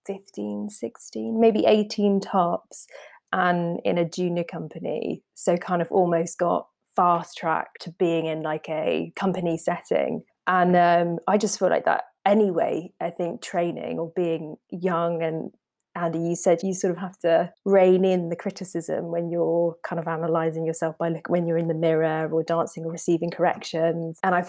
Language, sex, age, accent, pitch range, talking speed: English, female, 20-39, British, 170-190 Hz, 170 wpm